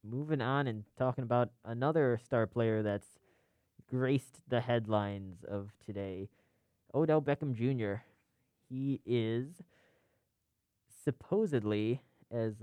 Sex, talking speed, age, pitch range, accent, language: male, 100 wpm, 20-39, 105-125 Hz, American, English